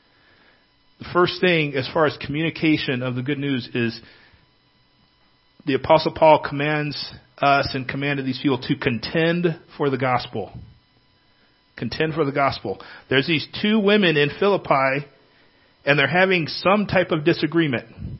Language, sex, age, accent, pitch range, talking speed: English, male, 40-59, American, 140-175 Hz, 140 wpm